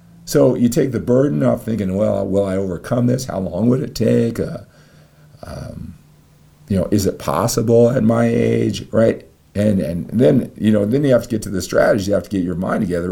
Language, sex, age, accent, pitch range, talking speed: English, male, 50-69, American, 90-115 Hz, 220 wpm